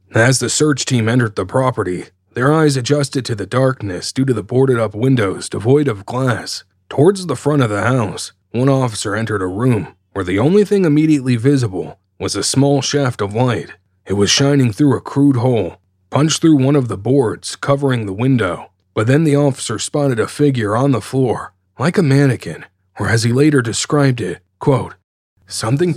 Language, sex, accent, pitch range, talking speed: English, male, American, 110-140 Hz, 190 wpm